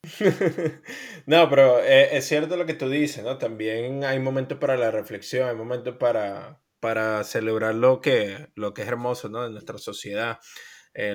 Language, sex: English, male